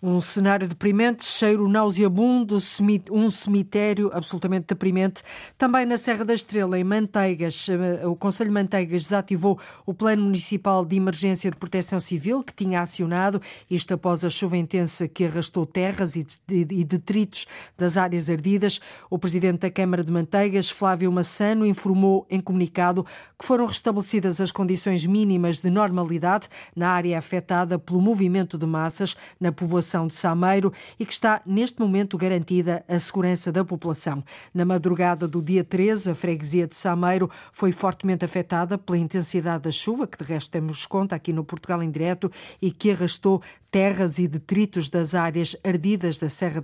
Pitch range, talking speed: 175-205 Hz, 155 wpm